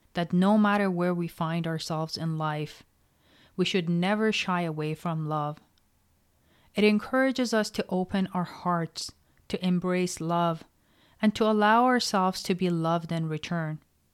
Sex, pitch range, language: female, 160-200 Hz, English